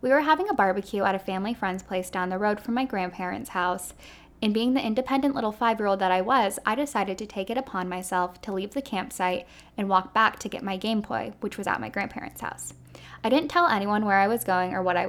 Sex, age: female, 10-29